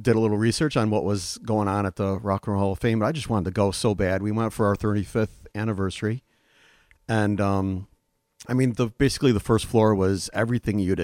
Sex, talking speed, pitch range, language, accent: male, 235 wpm, 95-120 Hz, English, American